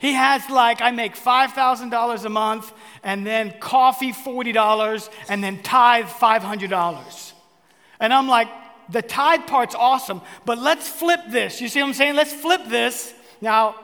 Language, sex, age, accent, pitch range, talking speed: English, male, 40-59, American, 195-250 Hz, 155 wpm